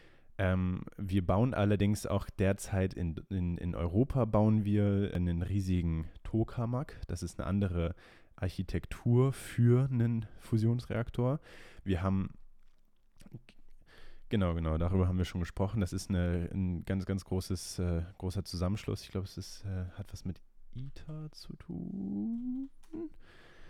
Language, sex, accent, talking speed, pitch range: German, male, German, 120 wpm, 90-105 Hz